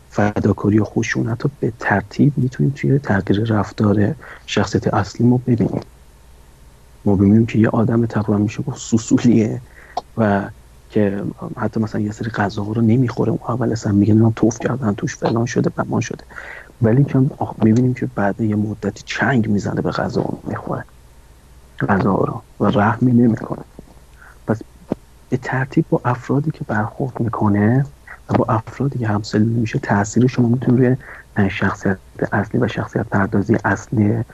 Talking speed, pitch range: 150 wpm, 100-120 Hz